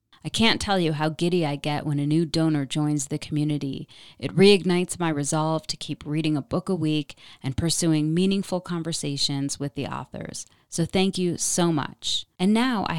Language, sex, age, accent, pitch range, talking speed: English, female, 30-49, American, 150-180 Hz, 190 wpm